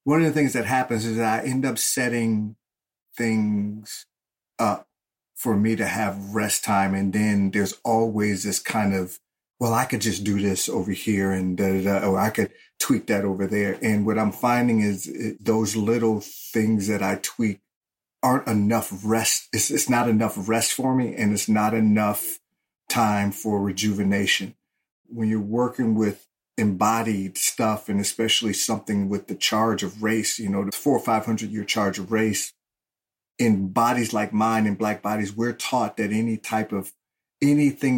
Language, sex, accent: English, male, American